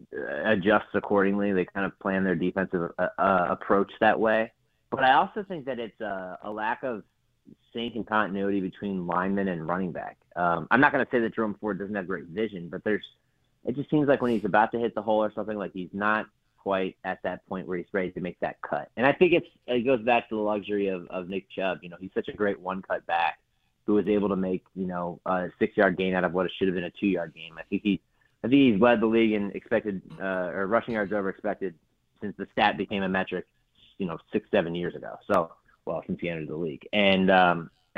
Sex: male